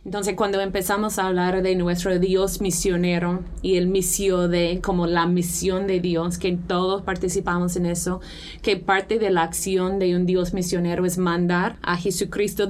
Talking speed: 170 wpm